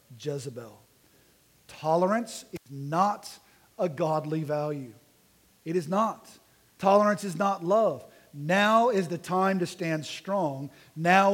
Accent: American